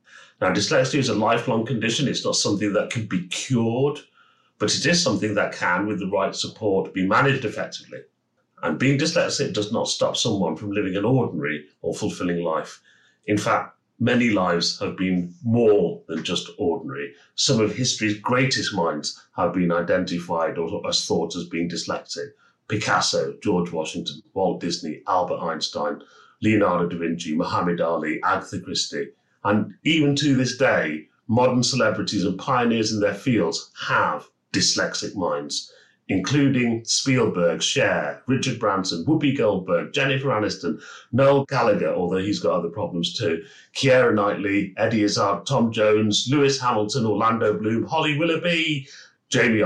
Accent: British